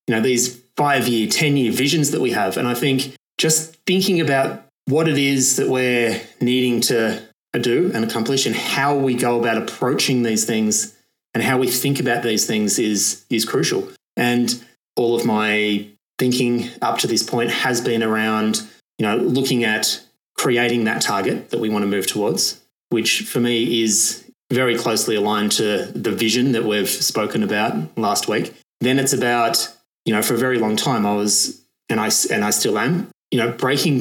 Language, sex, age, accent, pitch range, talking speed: English, male, 20-39, Australian, 110-130 Hz, 185 wpm